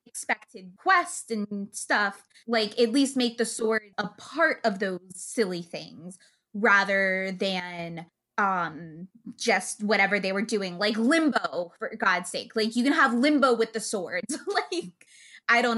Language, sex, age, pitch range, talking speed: English, female, 20-39, 210-250 Hz, 150 wpm